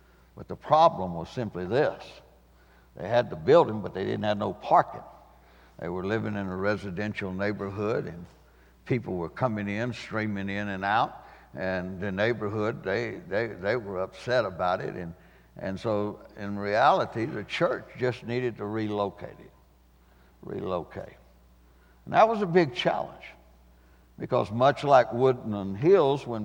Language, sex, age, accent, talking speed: English, male, 60-79, American, 150 wpm